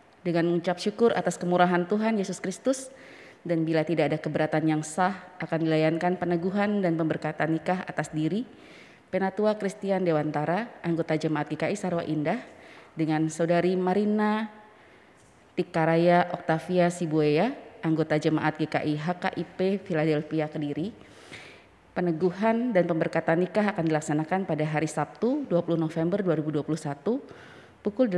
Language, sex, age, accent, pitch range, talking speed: Indonesian, female, 20-39, native, 155-185 Hz, 120 wpm